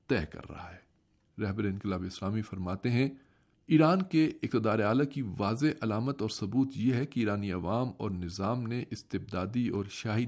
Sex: male